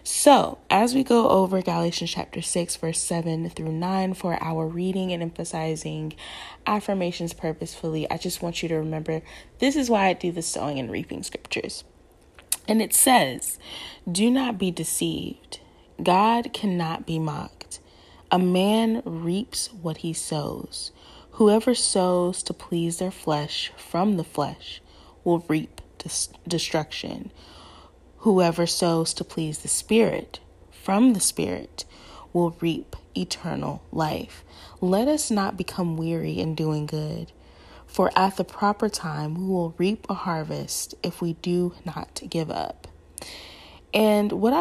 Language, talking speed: English, 140 wpm